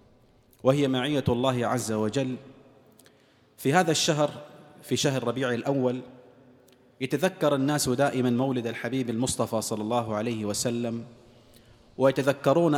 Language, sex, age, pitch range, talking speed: Arabic, male, 30-49, 125-160 Hz, 110 wpm